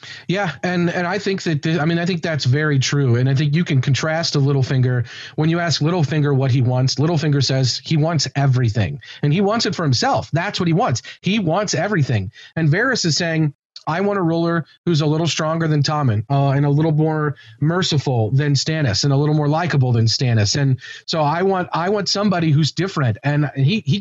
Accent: American